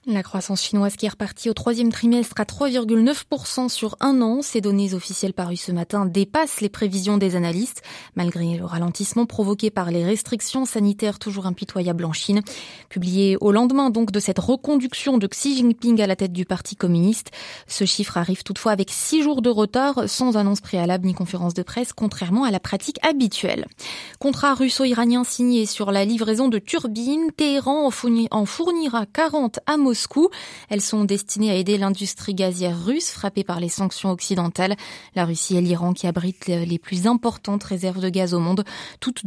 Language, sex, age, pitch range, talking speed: French, female, 20-39, 185-235 Hz, 175 wpm